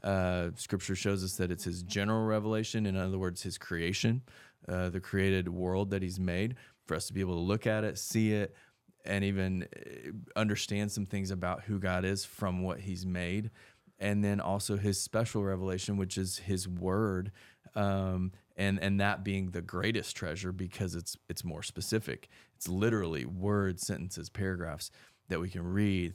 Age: 20-39